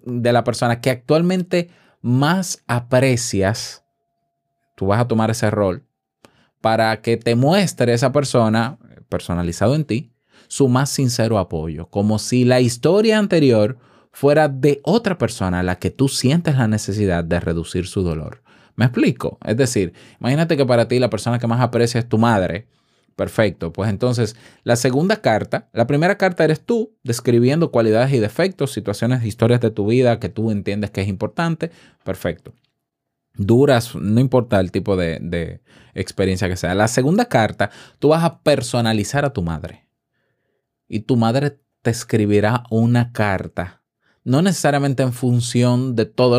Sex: male